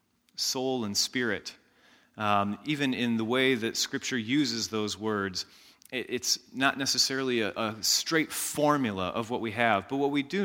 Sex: male